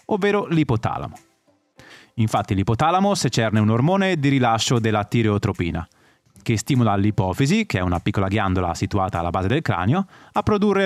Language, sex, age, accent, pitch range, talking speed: Italian, male, 30-49, native, 100-160 Hz, 145 wpm